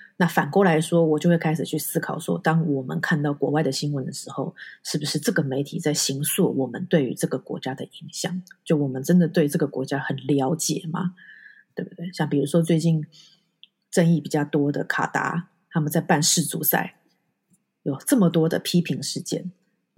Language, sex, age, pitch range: Chinese, female, 30-49, 150-185 Hz